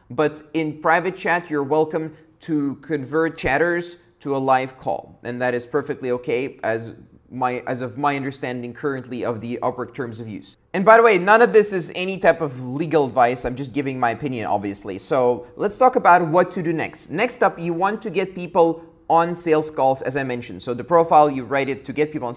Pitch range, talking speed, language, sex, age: 145-185 Hz, 215 wpm, English, male, 20-39